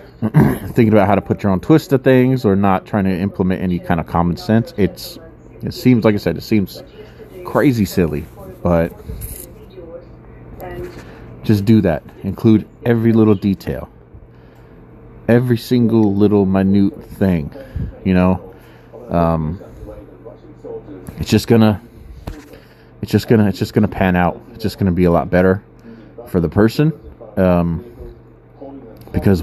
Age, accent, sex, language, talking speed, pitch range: 30-49, American, male, English, 140 wpm, 90-115 Hz